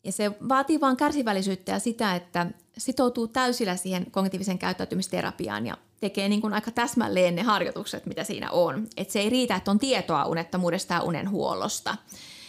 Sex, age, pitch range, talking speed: female, 30-49, 185-230 Hz, 160 wpm